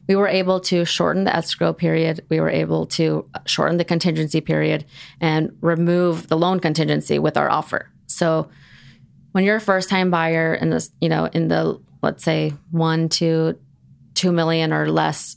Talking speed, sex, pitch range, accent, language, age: 175 wpm, female, 140-180 Hz, American, English, 30-49